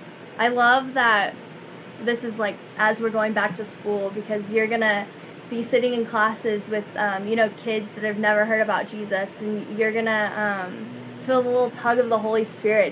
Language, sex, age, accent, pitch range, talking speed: English, female, 10-29, American, 210-235 Hz, 195 wpm